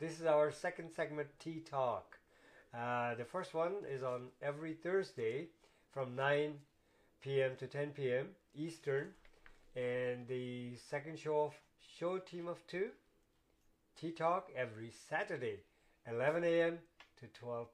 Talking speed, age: 130 wpm, 50-69